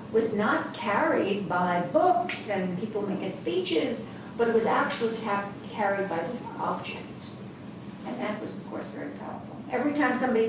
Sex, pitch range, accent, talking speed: female, 210-265 Hz, American, 155 wpm